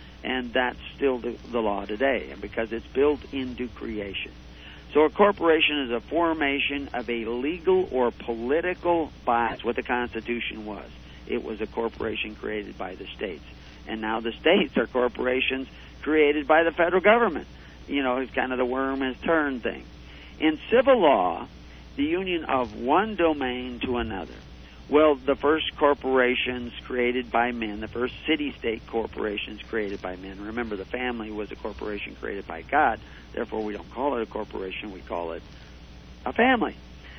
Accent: American